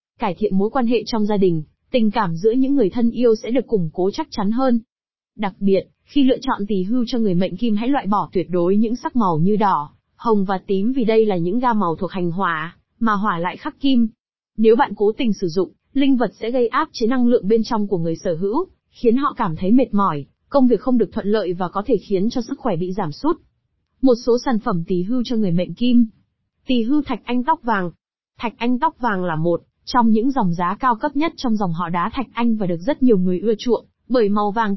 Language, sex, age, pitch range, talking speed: Vietnamese, female, 20-39, 195-250 Hz, 255 wpm